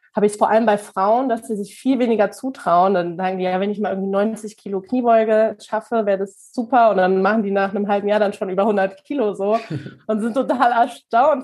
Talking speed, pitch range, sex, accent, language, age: 240 wpm, 190-225 Hz, female, German, German, 20-39